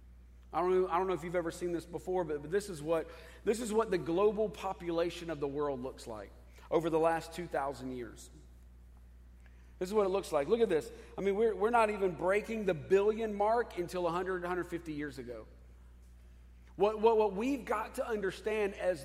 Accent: American